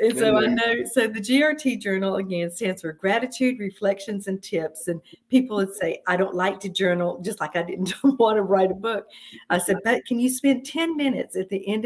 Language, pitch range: English, 180-235 Hz